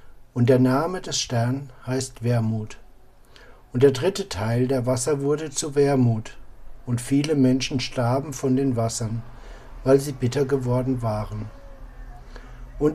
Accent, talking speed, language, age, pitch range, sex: German, 135 wpm, German, 60-79, 125-150 Hz, male